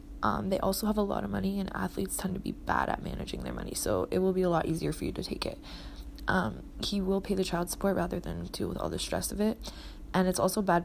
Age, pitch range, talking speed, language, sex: 20-39, 165-205 Hz, 275 wpm, English, female